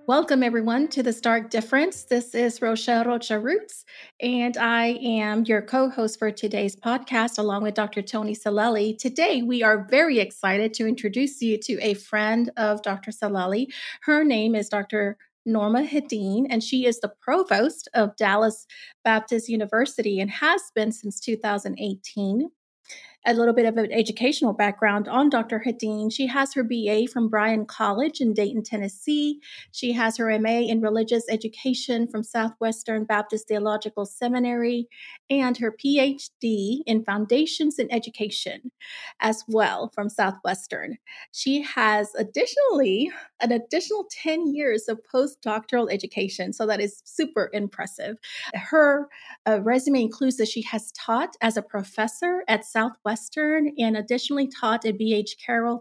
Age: 30-49